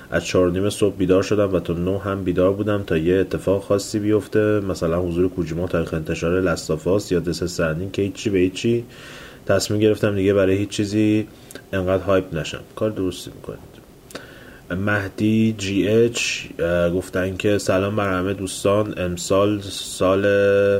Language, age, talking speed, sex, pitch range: Persian, 30-49, 145 wpm, male, 85-100 Hz